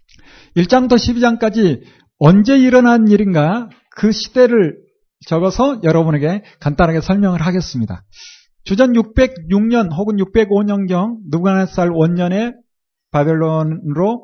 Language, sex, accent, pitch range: Korean, male, native, 160-230 Hz